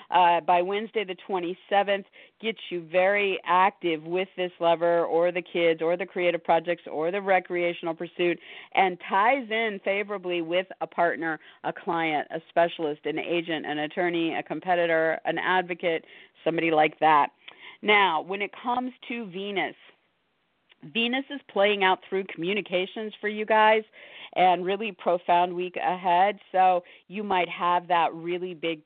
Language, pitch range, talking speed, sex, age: English, 170-205 Hz, 150 wpm, female, 50-69